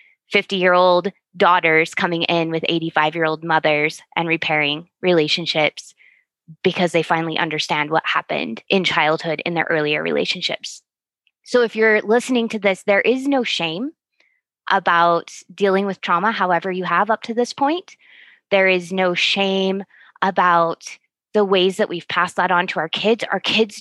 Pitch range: 170-205 Hz